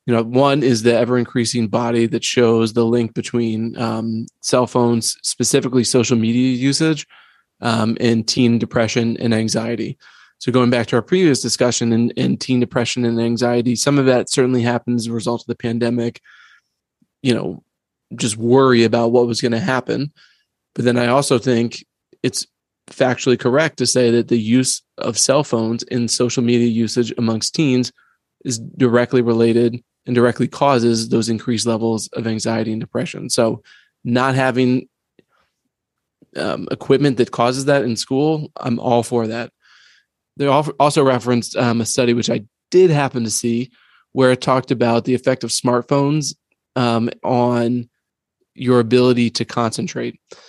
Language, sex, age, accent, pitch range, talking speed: English, male, 20-39, American, 115-130 Hz, 160 wpm